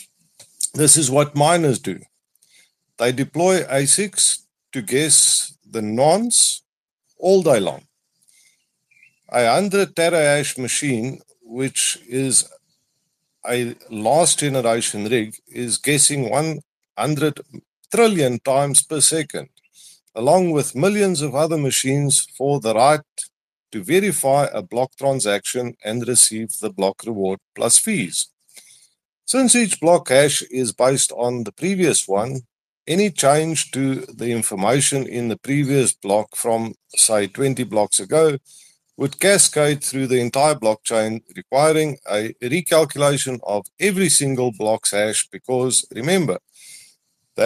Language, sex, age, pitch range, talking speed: English, male, 50-69, 115-155 Hz, 120 wpm